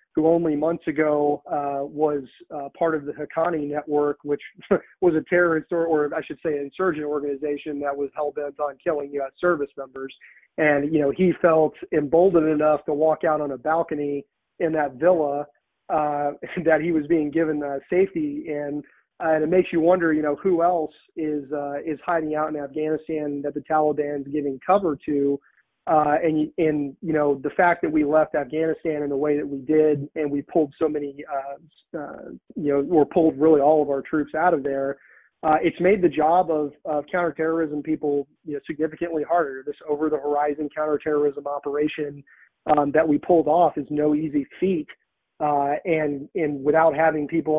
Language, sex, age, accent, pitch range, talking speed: English, male, 30-49, American, 145-160 Hz, 190 wpm